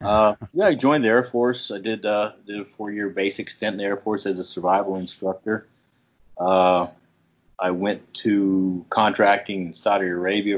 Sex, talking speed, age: male, 175 wpm, 30-49